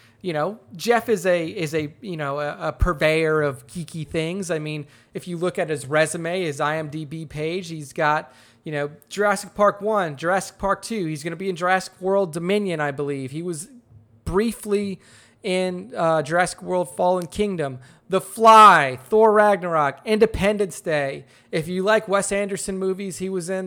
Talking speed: 175 wpm